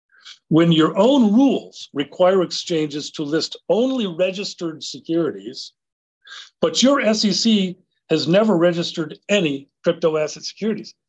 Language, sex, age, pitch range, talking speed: English, male, 50-69, 165-210 Hz, 115 wpm